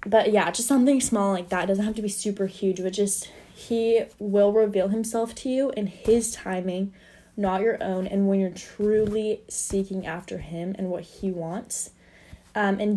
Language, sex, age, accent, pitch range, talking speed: English, female, 10-29, American, 185-220 Hz, 190 wpm